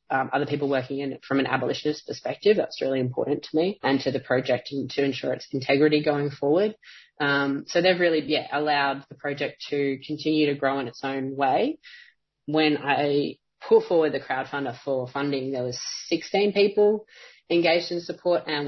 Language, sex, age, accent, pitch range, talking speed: English, female, 20-39, Australian, 135-155 Hz, 185 wpm